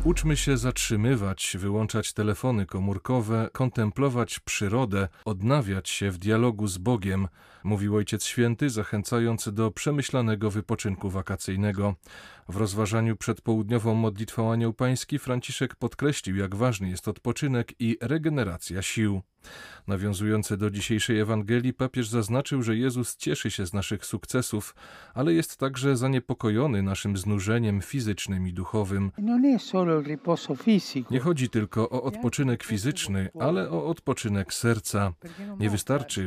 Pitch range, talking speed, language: 100-130 Hz, 120 wpm, Polish